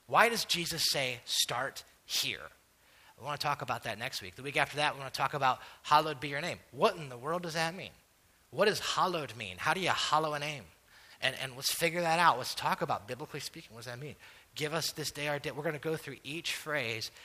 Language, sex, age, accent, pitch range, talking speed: English, male, 30-49, American, 110-145 Hz, 250 wpm